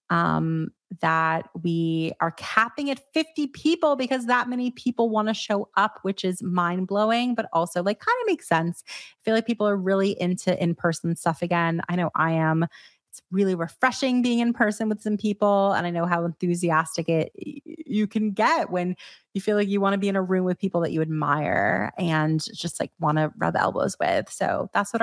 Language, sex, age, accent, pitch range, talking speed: English, female, 30-49, American, 170-225 Hz, 205 wpm